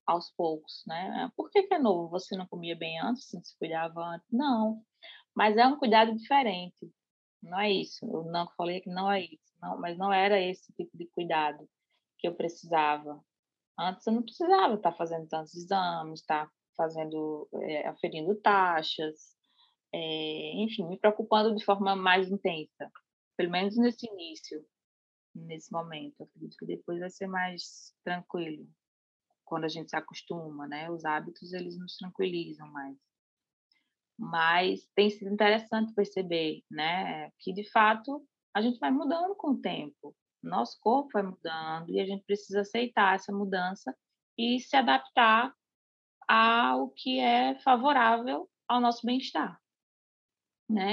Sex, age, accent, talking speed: female, 20-39, Brazilian, 150 wpm